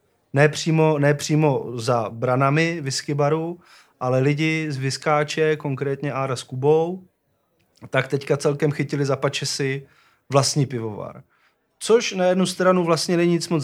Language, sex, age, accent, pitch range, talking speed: Czech, male, 30-49, native, 135-160 Hz, 140 wpm